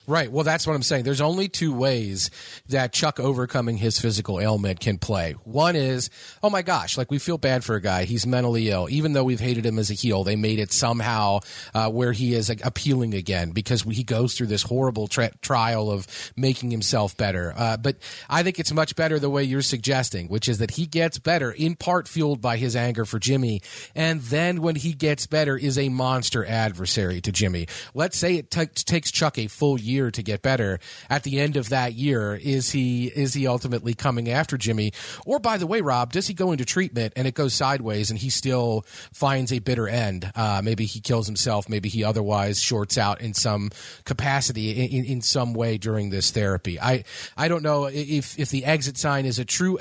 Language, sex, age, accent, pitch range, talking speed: English, male, 40-59, American, 110-145 Hz, 215 wpm